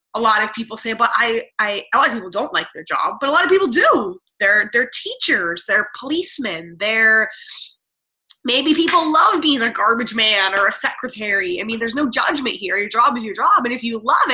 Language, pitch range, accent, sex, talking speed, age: English, 205-295 Hz, American, female, 220 wpm, 20-39